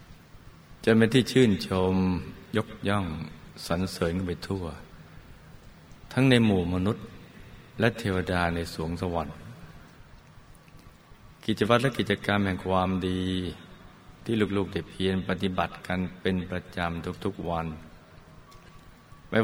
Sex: male